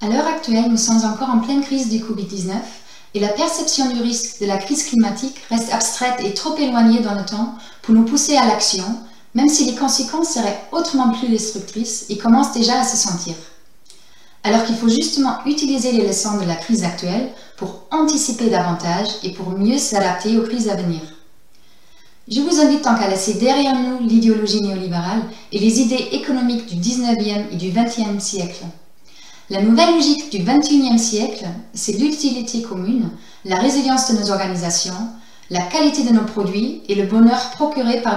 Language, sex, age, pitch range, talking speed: French, female, 30-49, 205-260 Hz, 180 wpm